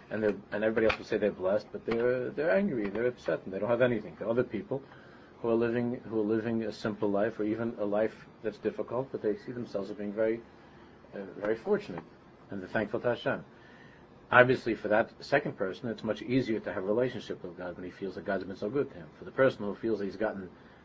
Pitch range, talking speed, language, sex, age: 100-125 Hz, 245 wpm, English, male, 40-59